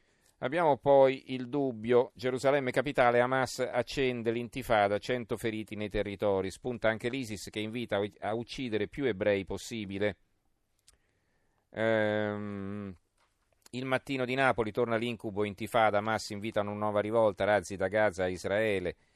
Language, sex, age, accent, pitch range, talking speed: Italian, male, 40-59, native, 100-120 Hz, 130 wpm